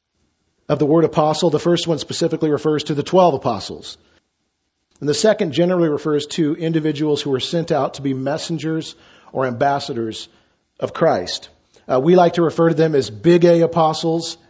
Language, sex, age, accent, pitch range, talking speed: English, male, 40-59, American, 140-170 Hz, 175 wpm